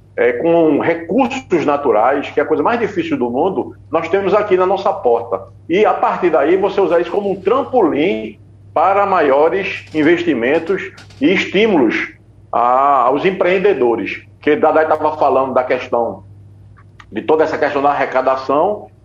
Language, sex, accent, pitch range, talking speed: Portuguese, male, Brazilian, 130-200 Hz, 150 wpm